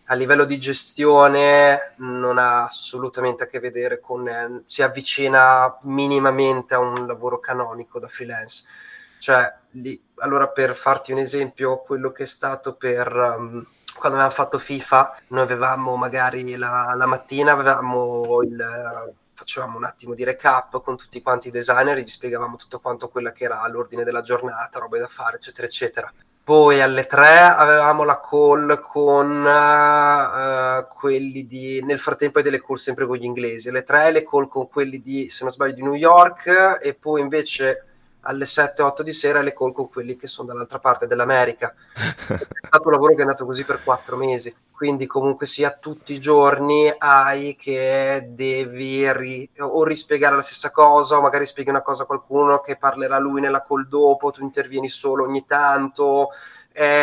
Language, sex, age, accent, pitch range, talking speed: Italian, male, 20-39, native, 130-145 Hz, 175 wpm